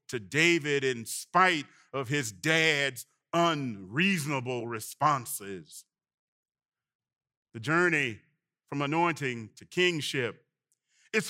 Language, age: English, 40-59